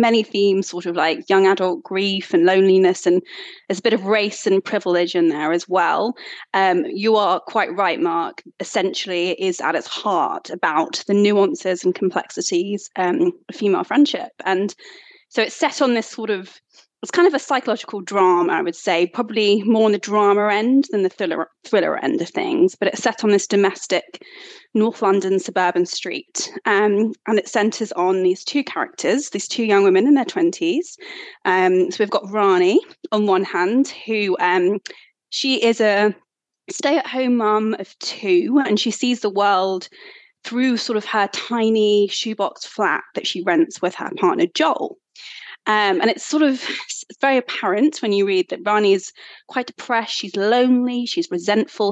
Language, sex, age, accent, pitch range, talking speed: English, female, 20-39, British, 195-260 Hz, 180 wpm